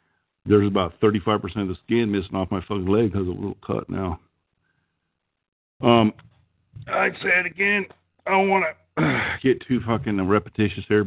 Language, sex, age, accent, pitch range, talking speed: English, male, 50-69, American, 90-110 Hz, 170 wpm